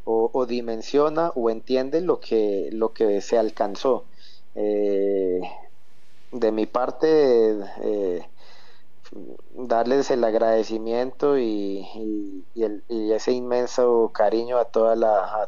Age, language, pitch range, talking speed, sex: 30-49, Spanish, 110-125 Hz, 120 wpm, male